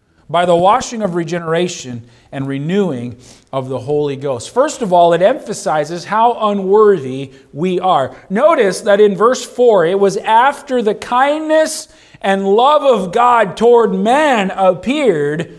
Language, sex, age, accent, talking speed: English, male, 40-59, American, 140 wpm